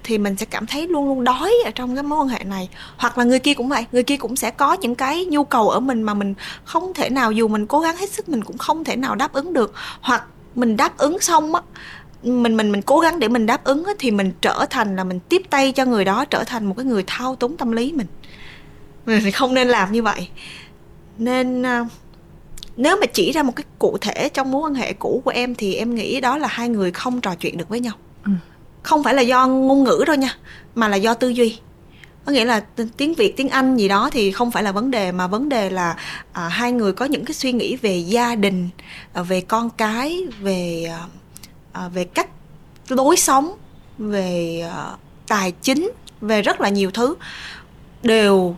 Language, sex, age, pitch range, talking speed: Vietnamese, female, 20-39, 205-270 Hz, 225 wpm